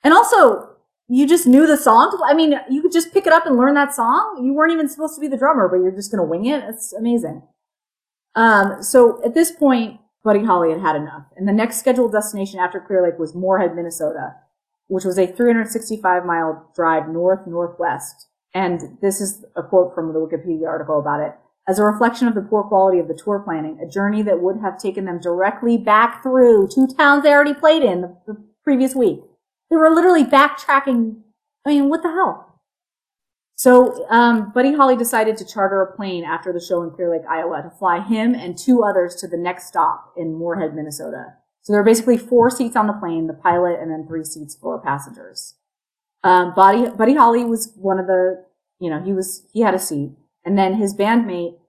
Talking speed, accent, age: 210 wpm, American, 30-49